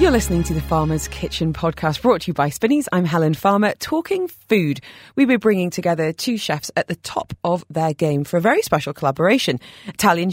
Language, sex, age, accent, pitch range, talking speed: English, female, 30-49, British, 150-240 Hz, 205 wpm